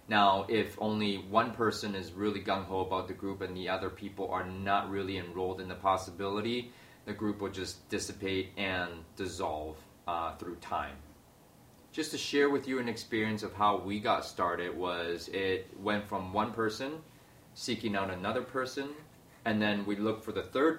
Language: English